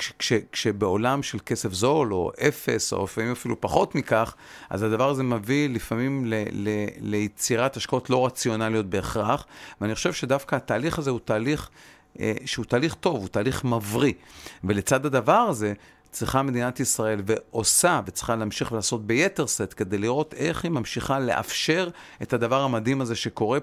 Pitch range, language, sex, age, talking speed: 115-140 Hz, Hebrew, male, 40-59, 155 wpm